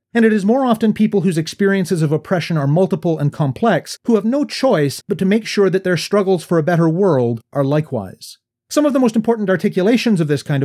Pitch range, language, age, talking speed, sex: 140-210 Hz, English, 40-59, 225 wpm, male